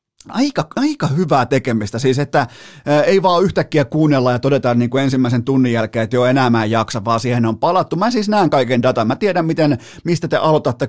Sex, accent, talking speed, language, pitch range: male, native, 185 wpm, Finnish, 115-145 Hz